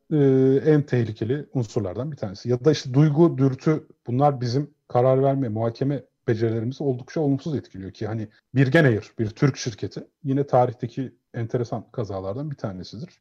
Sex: male